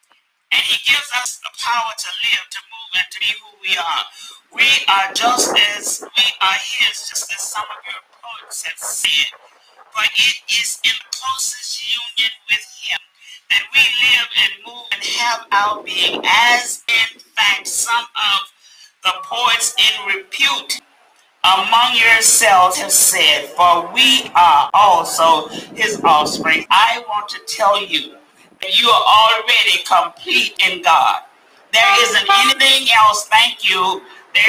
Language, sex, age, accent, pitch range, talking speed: English, male, 40-59, American, 220-340 Hz, 150 wpm